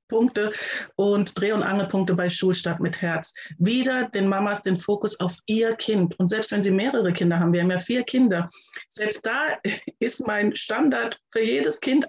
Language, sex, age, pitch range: German, female, 30-49, 190-230 Hz